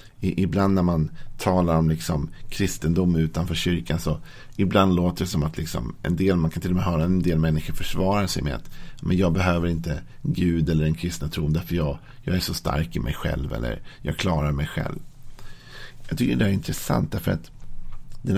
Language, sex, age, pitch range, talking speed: Swedish, male, 50-69, 85-110 Hz, 205 wpm